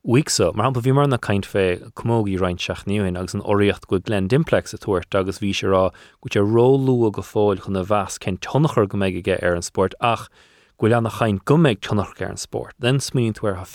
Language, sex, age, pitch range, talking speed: English, male, 30-49, 100-120 Hz, 190 wpm